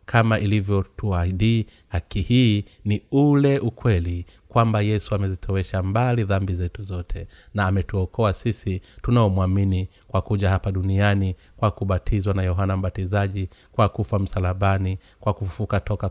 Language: Swahili